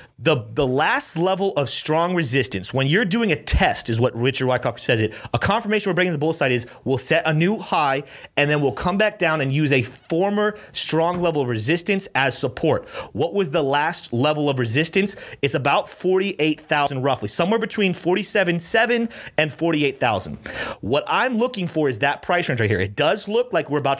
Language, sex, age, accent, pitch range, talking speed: English, male, 30-49, American, 130-175 Hz, 200 wpm